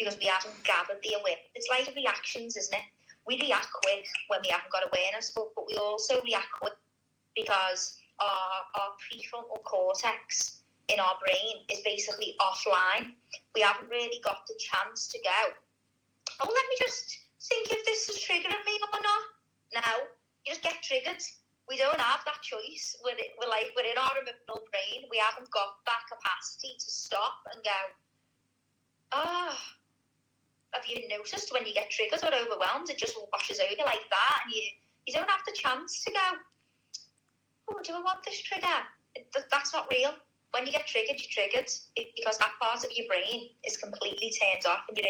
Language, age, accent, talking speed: Italian, 30-49, British, 180 wpm